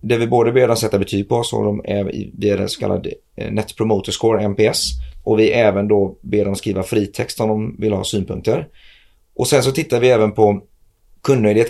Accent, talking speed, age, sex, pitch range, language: native, 200 wpm, 30-49, male, 100-115 Hz, Swedish